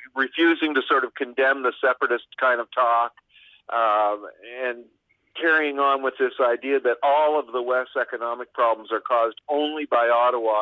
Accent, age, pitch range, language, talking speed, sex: American, 50-69, 120-145 Hz, English, 165 wpm, male